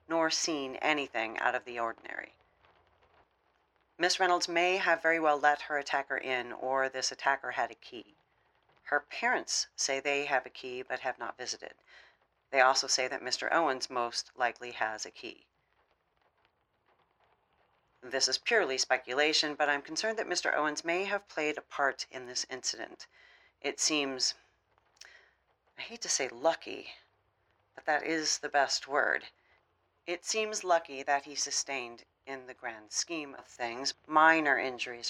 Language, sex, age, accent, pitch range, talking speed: English, female, 40-59, American, 125-155 Hz, 155 wpm